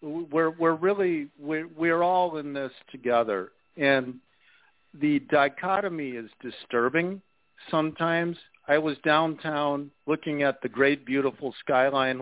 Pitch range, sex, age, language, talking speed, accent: 130-170 Hz, male, 50-69, English, 120 wpm, American